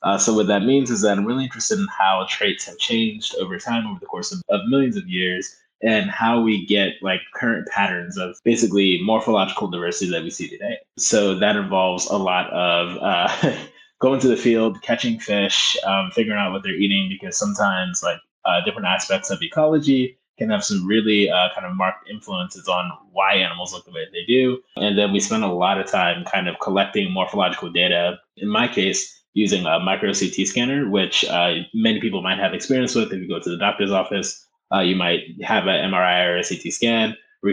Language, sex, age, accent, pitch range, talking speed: English, male, 20-39, American, 95-120 Hz, 210 wpm